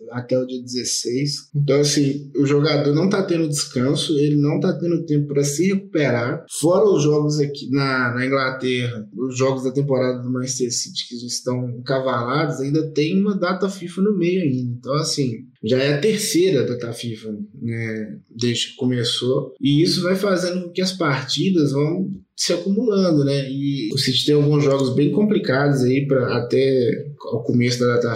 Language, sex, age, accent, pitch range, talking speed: Portuguese, male, 20-39, Brazilian, 130-170 Hz, 180 wpm